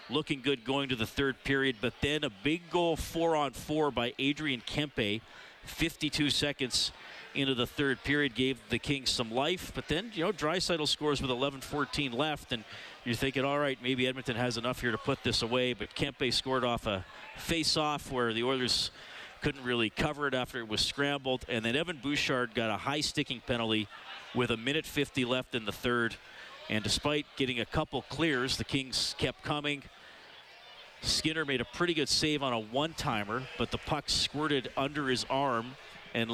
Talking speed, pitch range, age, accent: 185 wpm, 120-145 Hz, 40-59, American